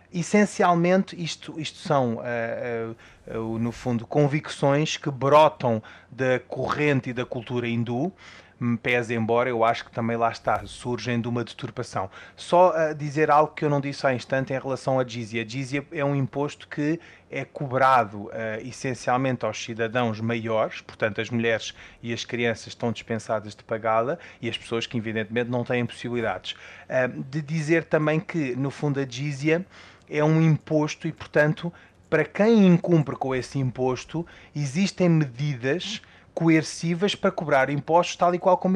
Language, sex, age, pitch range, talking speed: Portuguese, male, 20-39, 120-160 Hz, 155 wpm